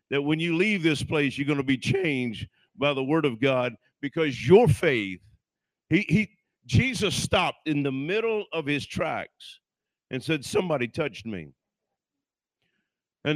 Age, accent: 50-69, American